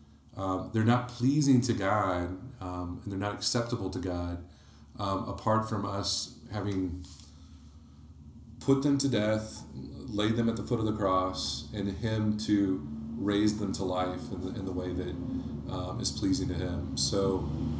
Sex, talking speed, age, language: male, 165 wpm, 40-59, English